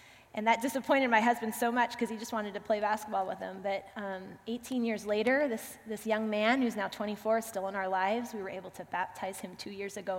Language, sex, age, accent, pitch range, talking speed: English, female, 20-39, American, 205-250 Hz, 250 wpm